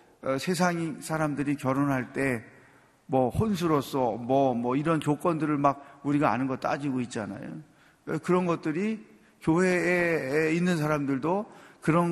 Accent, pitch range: native, 120-165 Hz